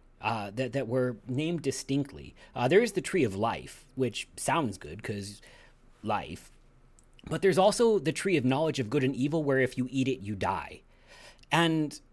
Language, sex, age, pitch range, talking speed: English, male, 30-49, 110-150 Hz, 185 wpm